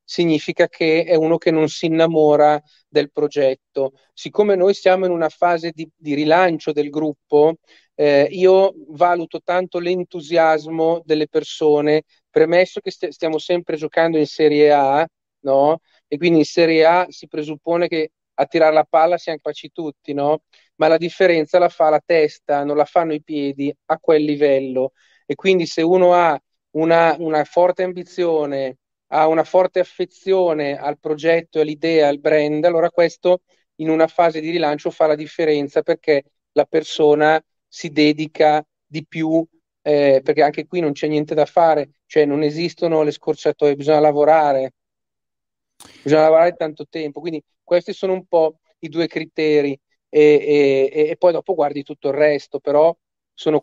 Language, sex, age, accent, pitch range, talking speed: Italian, male, 40-59, native, 150-170 Hz, 160 wpm